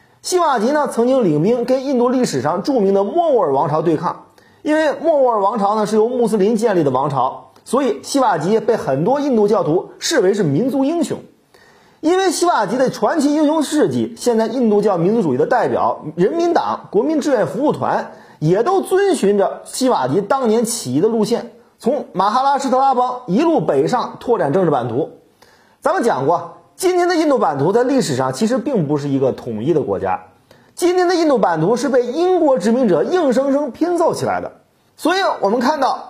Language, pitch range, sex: Chinese, 220-310 Hz, male